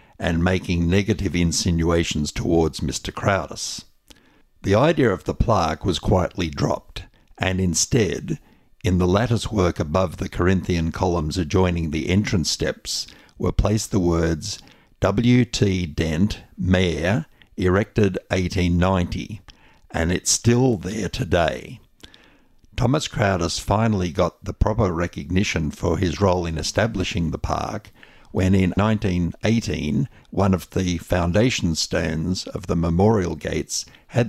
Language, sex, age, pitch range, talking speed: English, male, 60-79, 85-105 Hz, 120 wpm